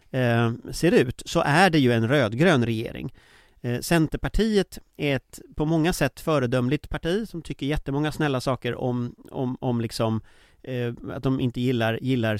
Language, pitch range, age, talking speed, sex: English, 120-160 Hz, 30-49, 140 wpm, male